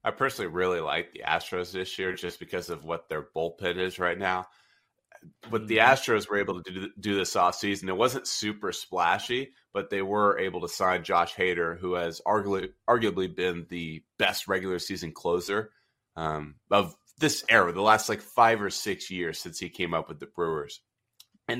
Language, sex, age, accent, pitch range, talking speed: English, male, 30-49, American, 90-105 Hz, 190 wpm